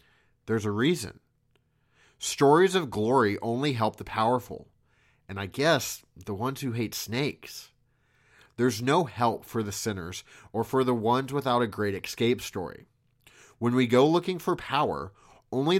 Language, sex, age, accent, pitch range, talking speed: English, male, 30-49, American, 105-130 Hz, 150 wpm